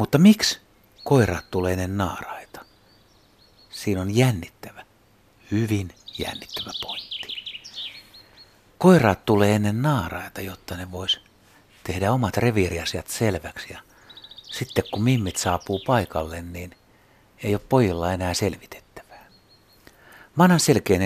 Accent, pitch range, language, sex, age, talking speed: native, 95-110 Hz, Finnish, male, 60-79, 110 wpm